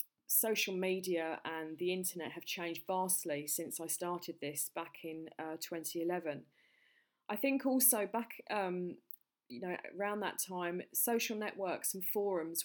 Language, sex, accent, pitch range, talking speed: English, female, British, 160-185 Hz, 140 wpm